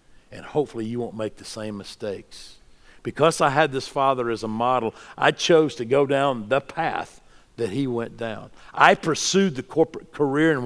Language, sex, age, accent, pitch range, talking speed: English, male, 50-69, American, 120-160 Hz, 185 wpm